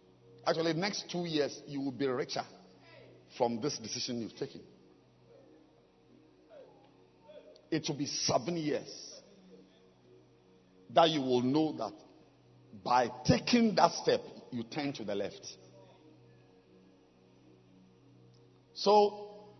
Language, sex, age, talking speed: English, male, 50-69, 100 wpm